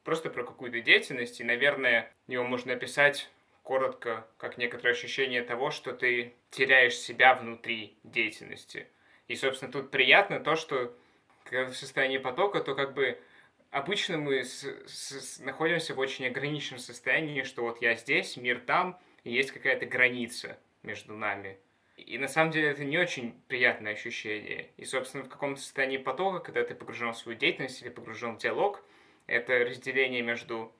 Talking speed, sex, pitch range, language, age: 160 wpm, male, 120-135 Hz, Russian, 20-39